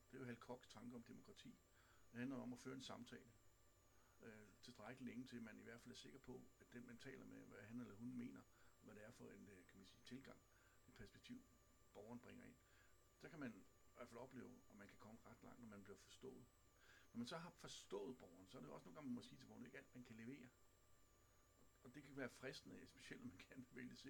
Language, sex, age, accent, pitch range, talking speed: Danish, male, 60-79, native, 100-125 Hz, 265 wpm